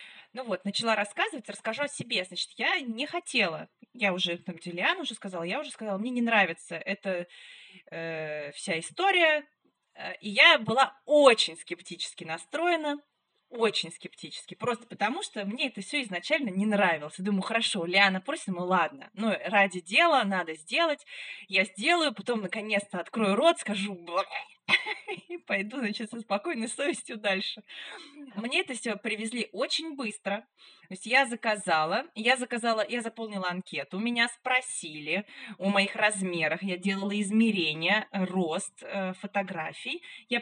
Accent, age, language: native, 20-39, Russian